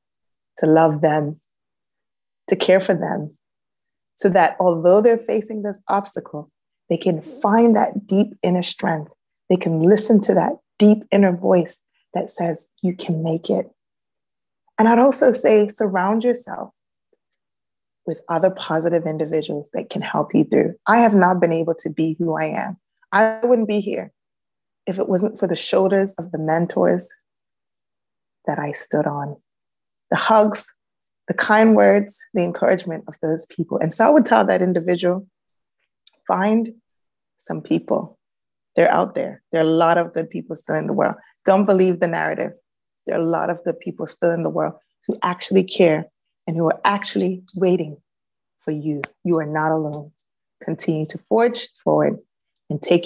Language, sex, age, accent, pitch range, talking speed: English, female, 30-49, American, 160-210 Hz, 165 wpm